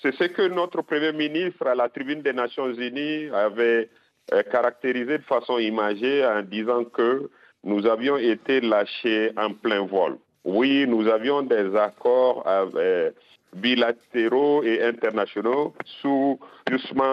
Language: French